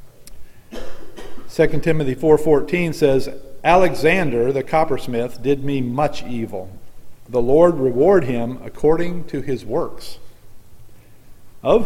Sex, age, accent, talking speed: male, 50-69, American, 100 wpm